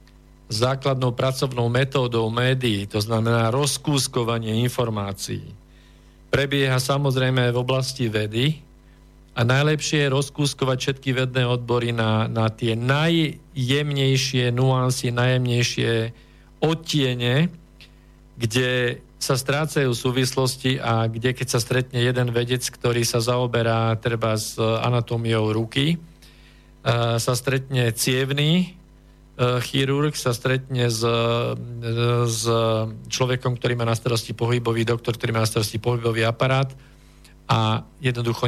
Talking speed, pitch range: 110 wpm, 115-130 Hz